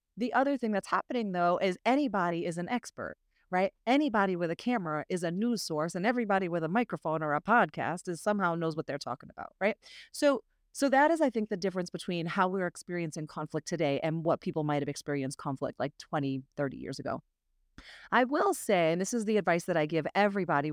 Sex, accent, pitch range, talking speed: female, American, 160-220 Hz, 215 wpm